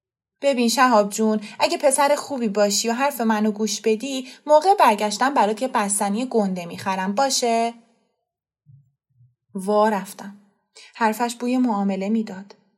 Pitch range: 195-235 Hz